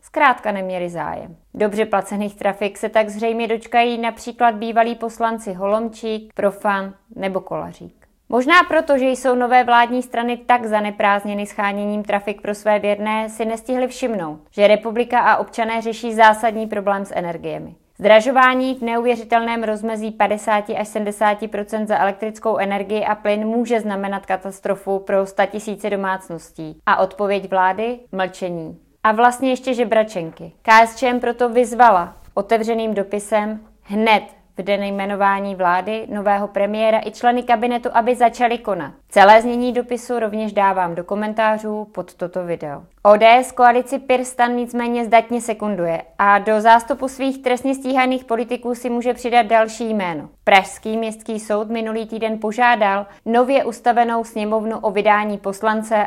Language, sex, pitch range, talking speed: Czech, female, 200-235 Hz, 135 wpm